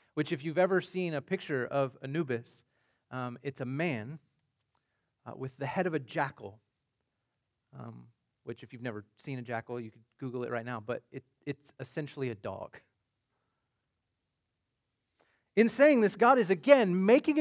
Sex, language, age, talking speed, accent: male, English, 30-49, 160 wpm, American